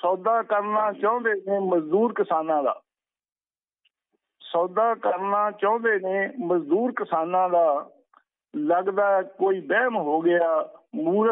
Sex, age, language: male, 50-69, Punjabi